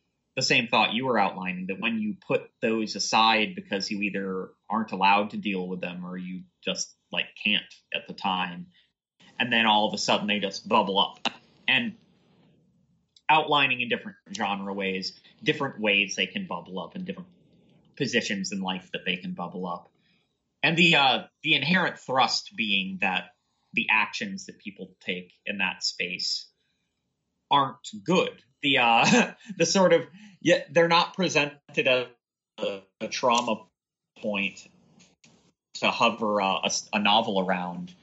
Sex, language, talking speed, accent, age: male, English, 160 wpm, American, 30-49